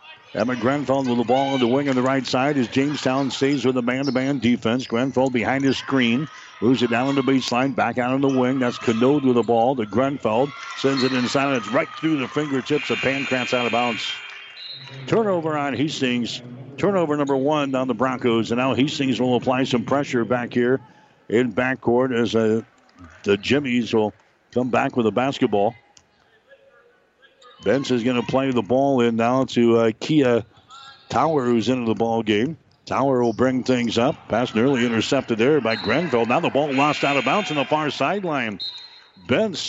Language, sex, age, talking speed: English, male, 60-79, 190 wpm